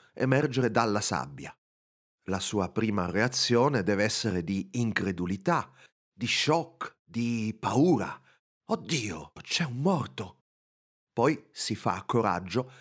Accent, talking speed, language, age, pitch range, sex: native, 110 wpm, Italian, 40-59, 100-130 Hz, male